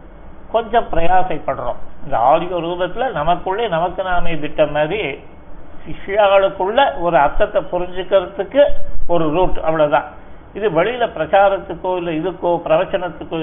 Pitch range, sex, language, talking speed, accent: 150-185 Hz, male, Tamil, 105 wpm, native